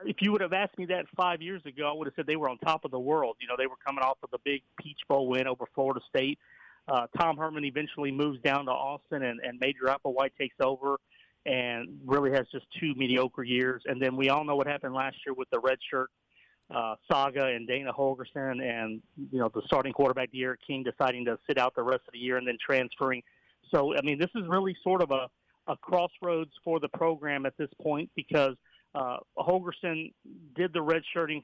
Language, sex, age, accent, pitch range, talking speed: English, male, 40-59, American, 130-155 Hz, 225 wpm